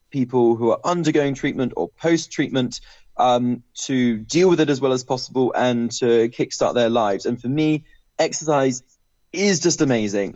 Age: 20-39